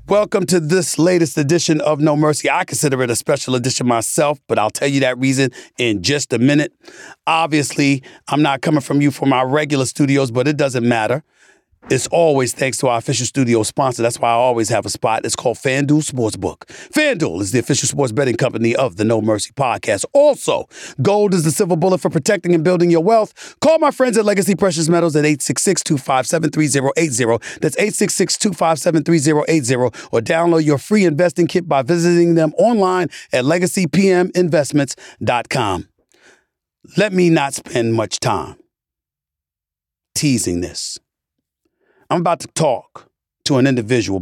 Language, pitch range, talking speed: English, 125-170 Hz, 165 wpm